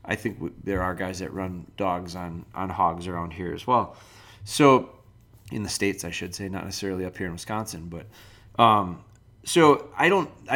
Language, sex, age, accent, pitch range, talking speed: English, male, 30-49, American, 95-110 Hz, 190 wpm